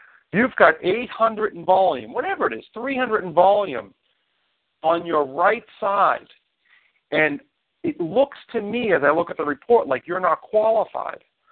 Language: English